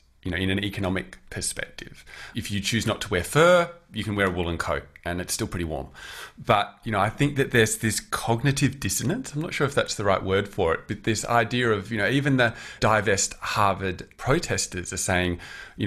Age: 30-49